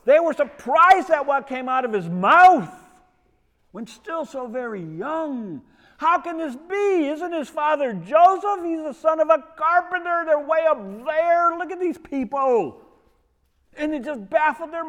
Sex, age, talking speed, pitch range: male, 50-69, 170 wpm, 180-300 Hz